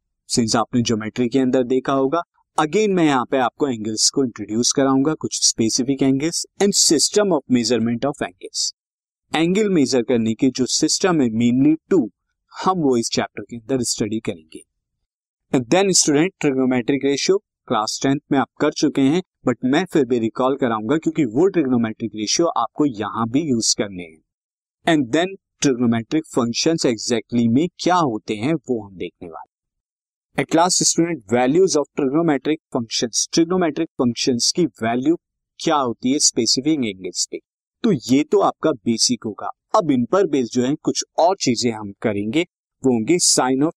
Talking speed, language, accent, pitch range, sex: 100 wpm, Hindi, native, 120-165 Hz, male